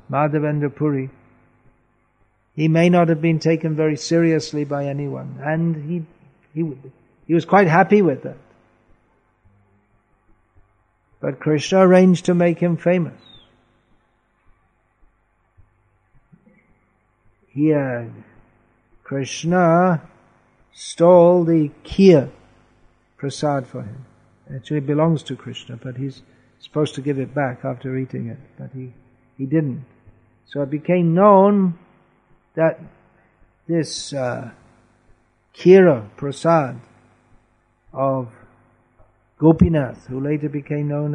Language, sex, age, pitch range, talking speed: English, male, 60-79, 115-160 Hz, 105 wpm